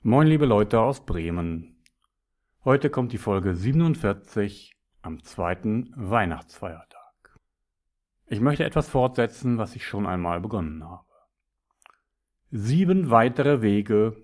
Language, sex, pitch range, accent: German, male, 95-125 Hz, German